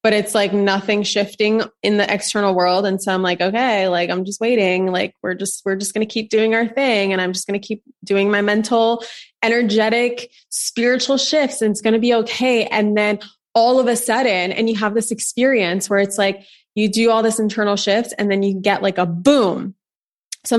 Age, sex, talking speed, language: 20-39, female, 220 wpm, English